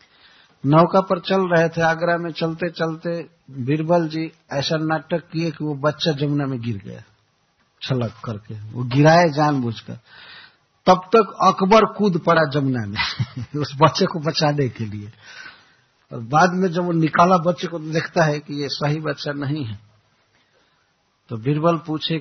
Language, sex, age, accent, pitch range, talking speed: Hindi, male, 60-79, native, 130-170 Hz, 160 wpm